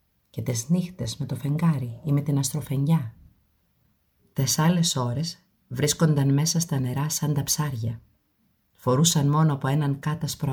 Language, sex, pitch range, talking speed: Greek, female, 125-160 Hz, 140 wpm